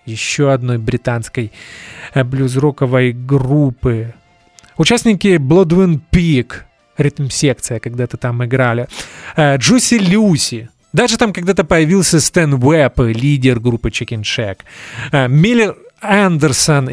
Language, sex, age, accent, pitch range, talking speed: Russian, male, 30-49, native, 120-160 Hz, 90 wpm